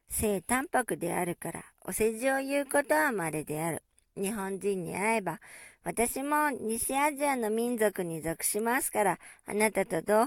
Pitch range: 195-255 Hz